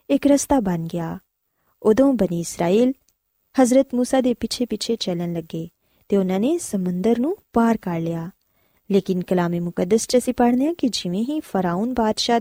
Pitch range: 185-255 Hz